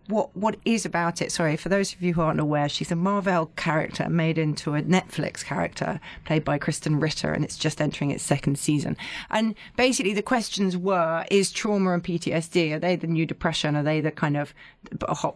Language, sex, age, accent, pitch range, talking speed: English, female, 30-49, British, 155-190 Hz, 205 wpm